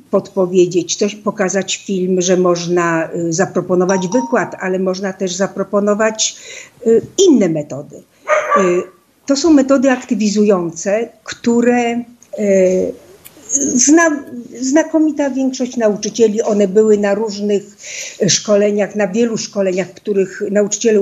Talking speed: 95 wpm